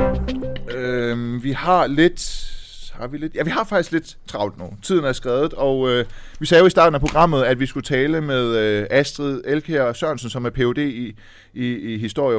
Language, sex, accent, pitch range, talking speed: Danish, male, native, 110-140 Hz, 205 wpm